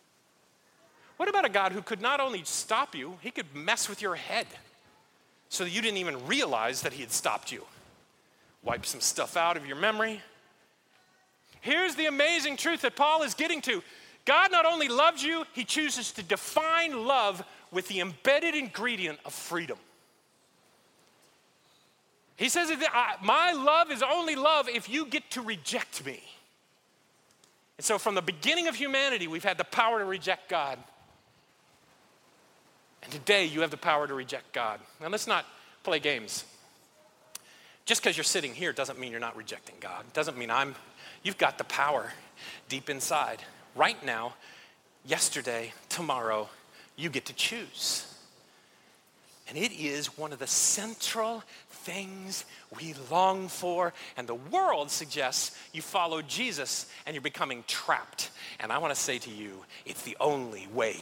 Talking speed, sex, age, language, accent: 160 wpm, male, 40-59, English, American